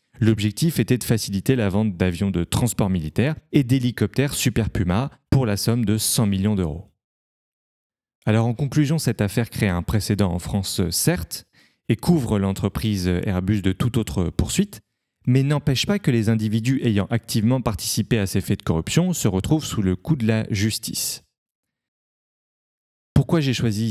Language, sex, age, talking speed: French, male, 30-49, 165 wpm